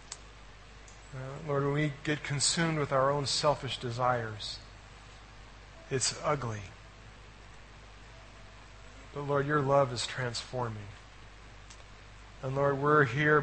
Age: 40-59